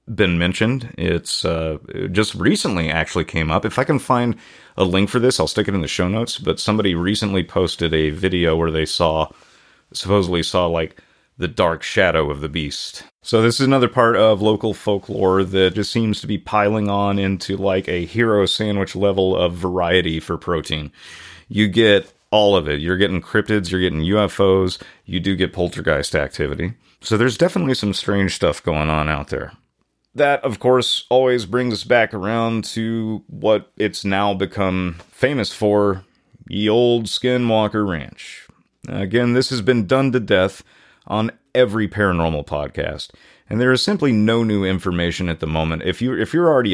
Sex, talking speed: male, 180 wpm